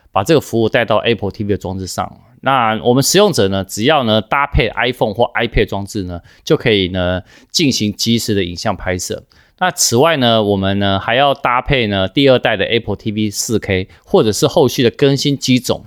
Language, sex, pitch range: Chinese, male, 100-135 Hz